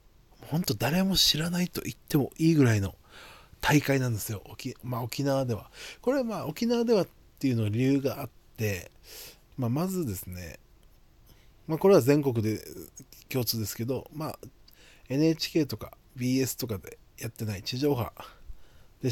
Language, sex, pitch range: Japanese, male, 105-150 Hz